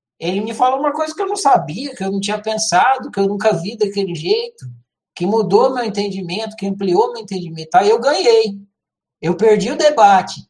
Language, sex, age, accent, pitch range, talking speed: Portuguese, male, 60-79, Brazilian, 180-235 Hz, 200 wpm